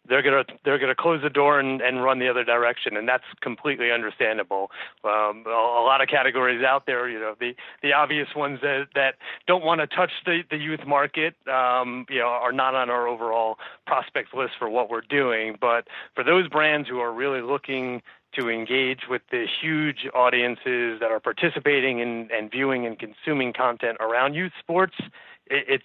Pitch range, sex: 115-140 Hz, male